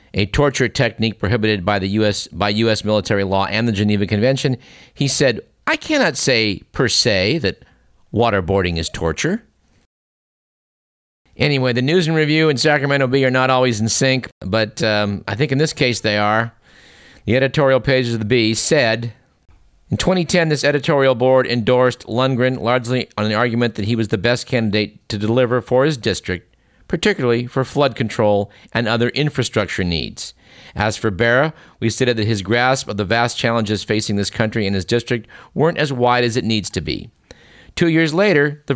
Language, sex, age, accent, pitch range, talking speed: English, male, 50-69, American, 105-135 Hz, 180 wpm